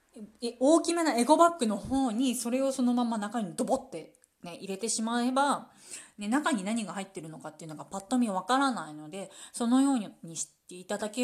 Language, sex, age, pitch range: Japanese, female, 20-39, 180-270 Hz